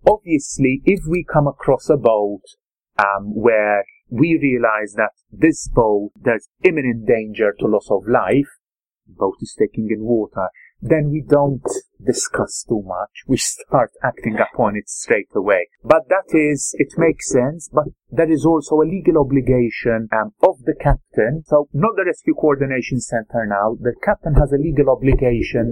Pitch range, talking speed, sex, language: 120-160 Hz, 160 wpm, male, English